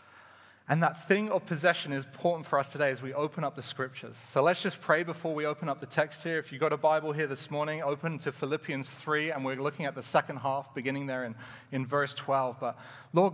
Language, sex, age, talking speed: English, male, 30-49, 245 wpm